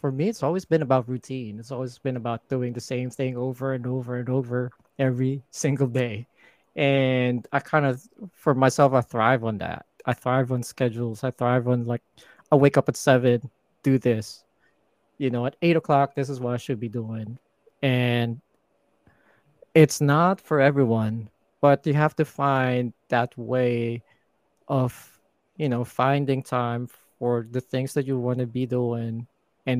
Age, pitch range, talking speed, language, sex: 20-39, 120-135 Hz, 175 wpm, English, male